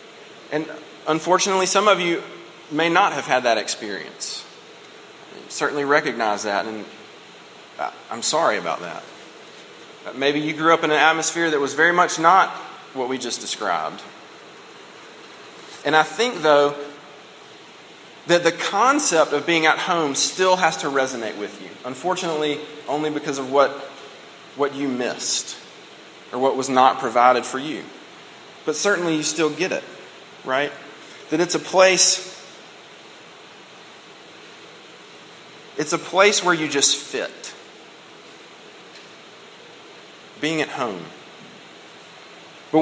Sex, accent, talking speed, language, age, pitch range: male, American, 130 wpm, English, 30-49, 135-180 Hz